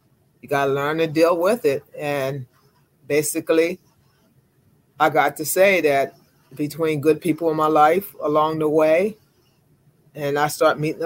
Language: English